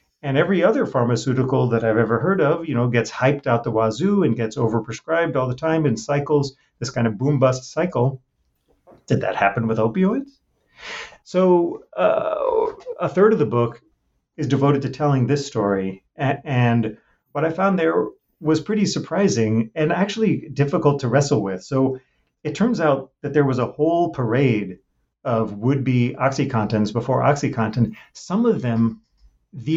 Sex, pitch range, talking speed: male, 125-170 Hz, 160 wpm